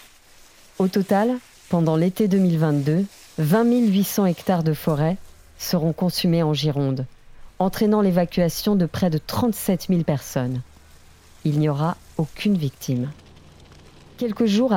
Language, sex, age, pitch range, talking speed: French, female, 40-59, 145-190 Hz, 120 wpm